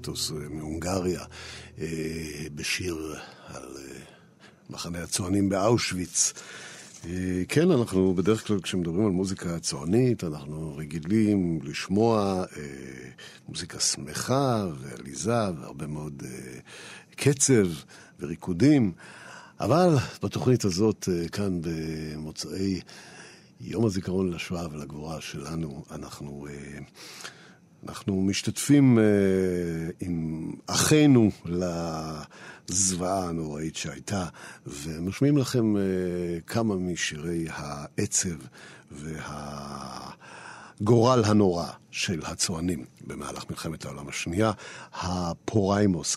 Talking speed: 75 wpm